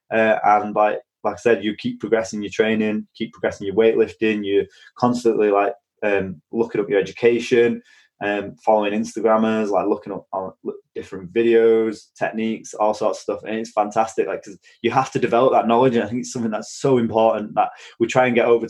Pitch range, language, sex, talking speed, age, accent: 100-120 Hz, English, male, 200 wpm, 20-39, British